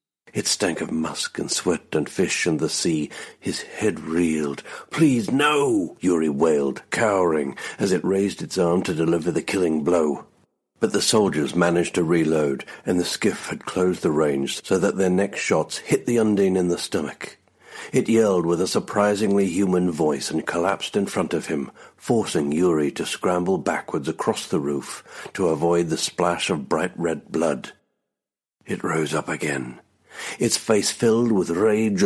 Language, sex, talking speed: English, male, 170 wpm